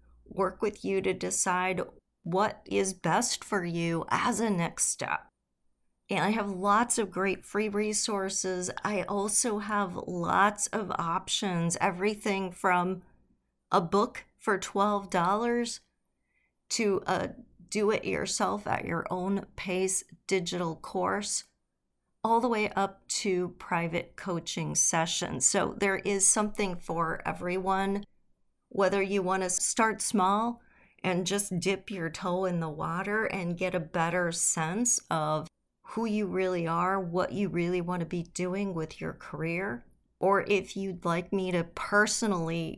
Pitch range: 170-205 Hz